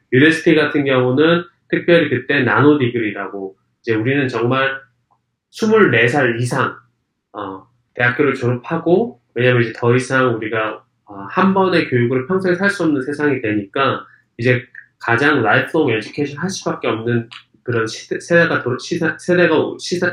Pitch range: 115-160 Hz